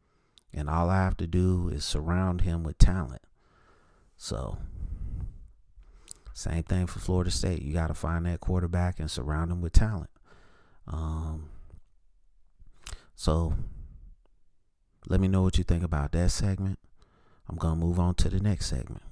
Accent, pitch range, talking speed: American, 75-90 Hz, 150 wpm